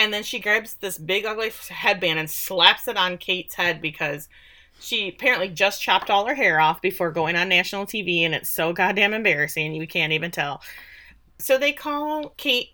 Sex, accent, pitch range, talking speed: female, American, 170-220 Hz, 195 wpm